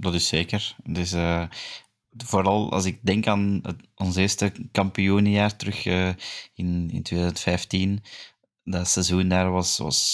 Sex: male